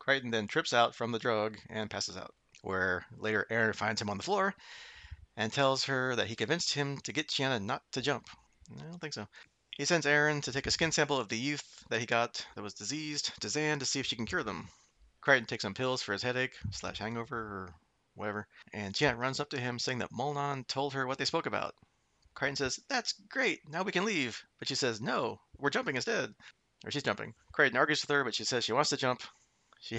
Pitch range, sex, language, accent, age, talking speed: 105-135 Hz, male, English, American, 30-49, 235 wpm